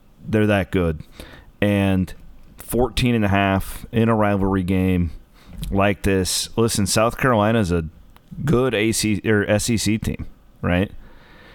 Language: English